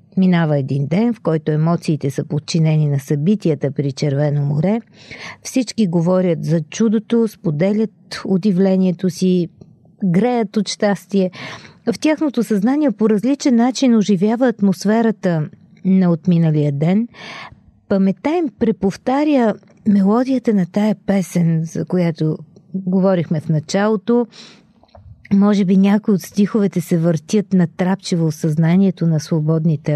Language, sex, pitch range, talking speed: Bulgarian, female, 170-220 Hz, 115 wpm